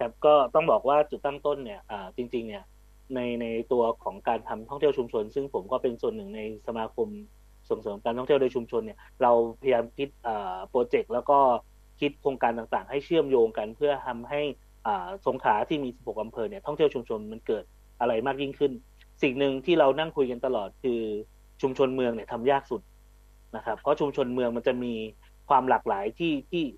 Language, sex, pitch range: English, male, 115-150 Hz